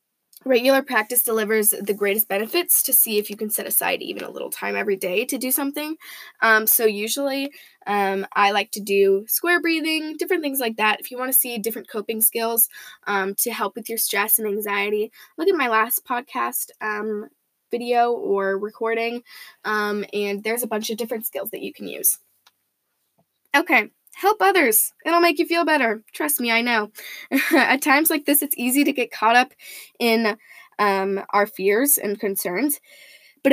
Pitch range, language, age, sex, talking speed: 210-260 Hz, English, 10-29, female, 185 wpm